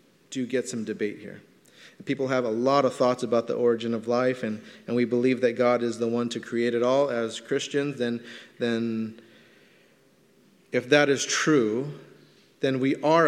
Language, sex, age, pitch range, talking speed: English, male, 30-49, 115-135 Hz, 180 wpm